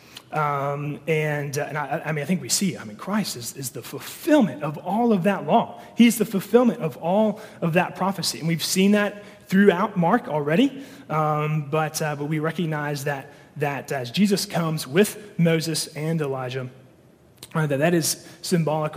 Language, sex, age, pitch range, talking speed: English, male, 30-49, 145-175 Hz, 185 wpm